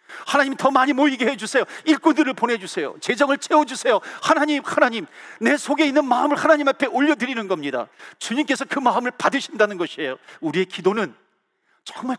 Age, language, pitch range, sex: 40-59, Korean, 160-270 Hz, male